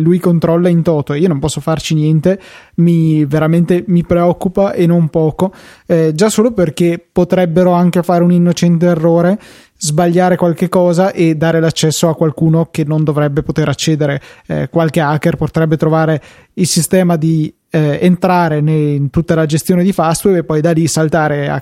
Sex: male